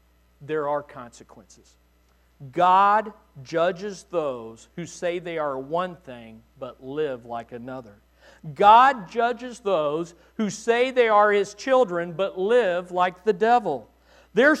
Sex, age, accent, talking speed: male, 40-59, American, 125 wpm